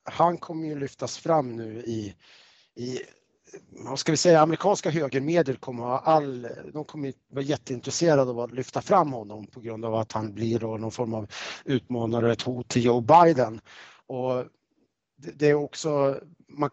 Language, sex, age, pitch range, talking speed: Swedish, male, 30-49, 110-140 Hz, 165 wpm